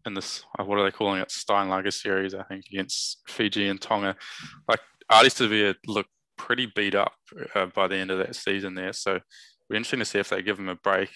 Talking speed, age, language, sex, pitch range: 220 wpm, 20-39, English, male, 95-100 Hz